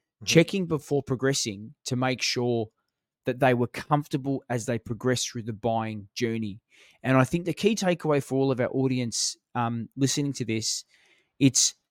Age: 20-39